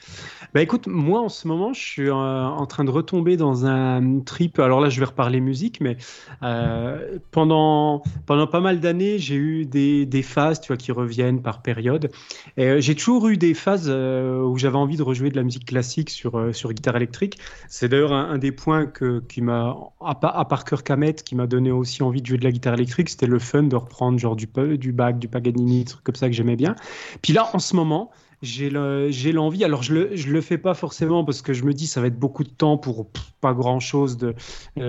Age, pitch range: 30-49, 125-155 Hz